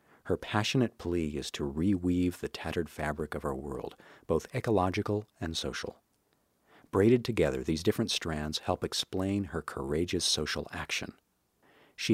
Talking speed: 140 wpm